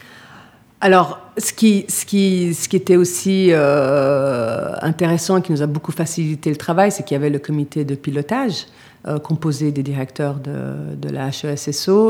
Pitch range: 145-175 Hz